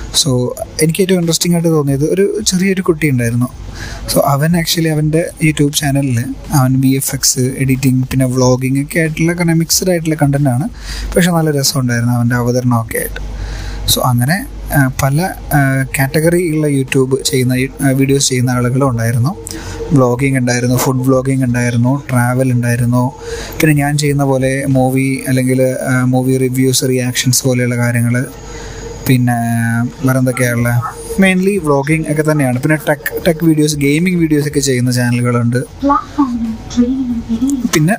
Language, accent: Malayalam, native